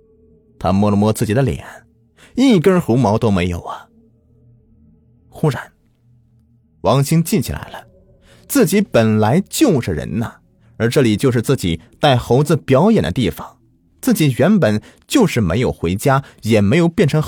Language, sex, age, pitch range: Chinese, male, 30-49, 100-140 Hz